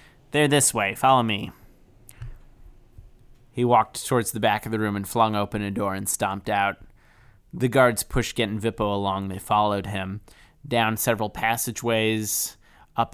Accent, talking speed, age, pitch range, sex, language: American, 160 wpm, 20-39, 105-125 Hz, male, English